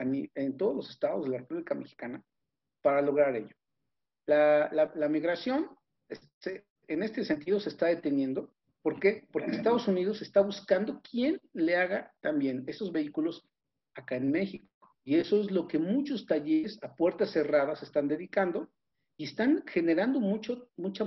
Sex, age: male, 50-69